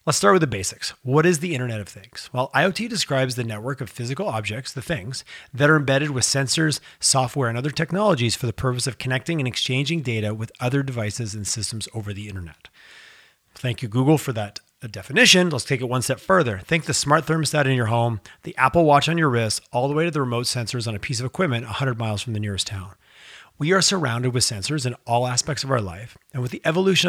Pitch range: 115-145 Hz